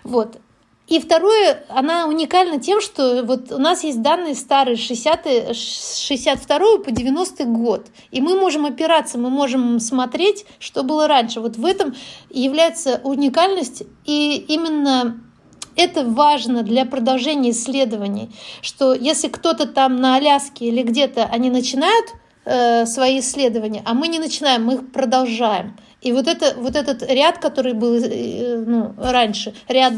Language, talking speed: Russian, 140 wpm